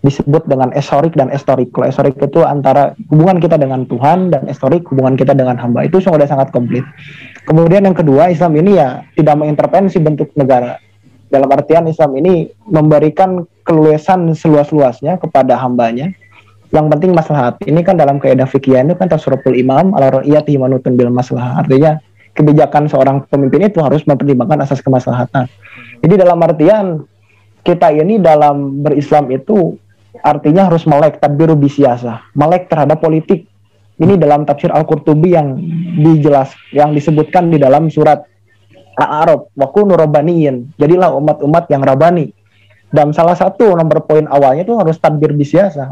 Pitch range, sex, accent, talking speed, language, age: 135-165 Hz, male, native, 135 wpm, Indonesian, 20-39